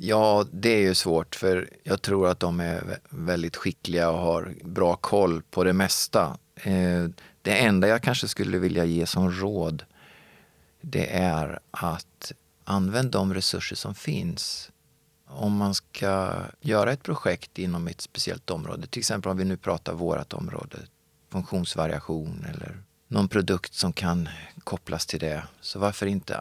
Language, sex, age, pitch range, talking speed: Swedish, male, 30-49, 85-100 Hz, 150 wpm